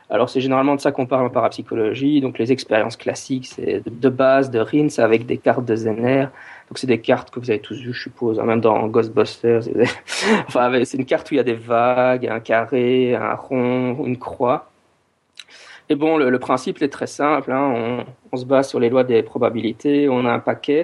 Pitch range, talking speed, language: 120-140 Hz, 220 wpm, French